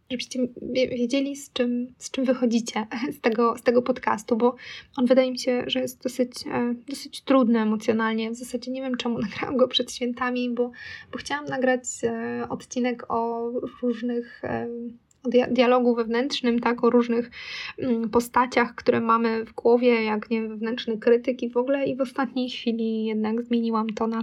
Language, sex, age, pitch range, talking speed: Polish, female, 20-39, 230-250 Hz, 160 wpm